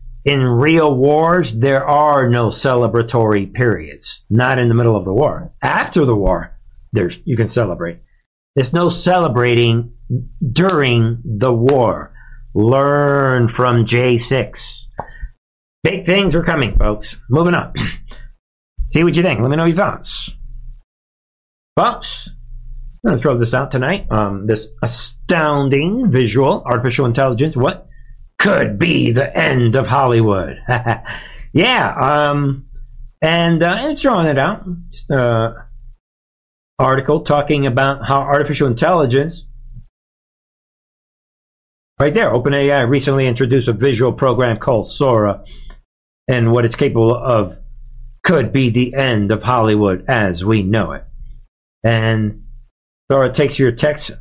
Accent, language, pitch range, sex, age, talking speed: American, English, 115-140 Hz, male, 50-69, 125 wpm